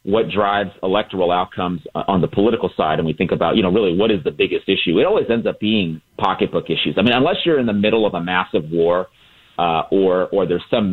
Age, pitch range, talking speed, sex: 40-59, 95-120 Hz, 235 wpm, male